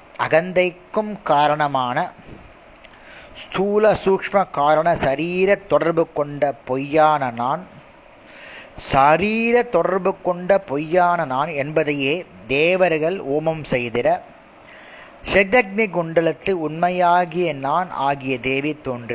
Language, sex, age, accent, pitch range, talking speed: Tamil, male, 30-49, native, 140-180 Hz, 80 wpm